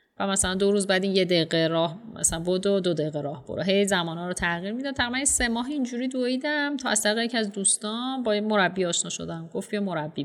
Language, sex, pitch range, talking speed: Persian, female, 180-225 Hz, 220 wpm